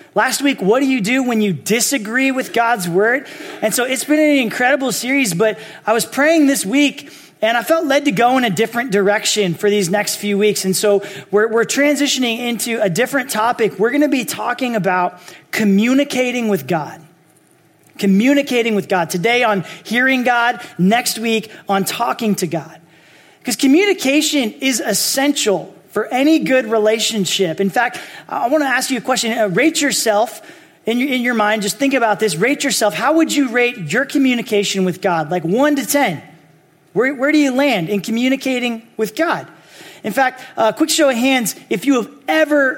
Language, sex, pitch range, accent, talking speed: English, male, 205-275 Hz, American, 190 wpm